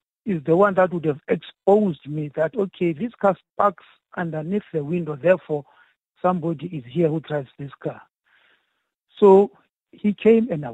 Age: 60-79